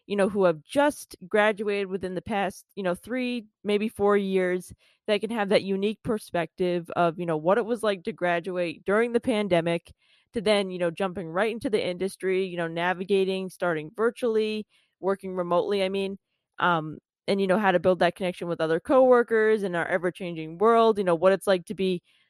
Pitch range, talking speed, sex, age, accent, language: 180-215 Hz, 200 wpm, female, 20-39, American, English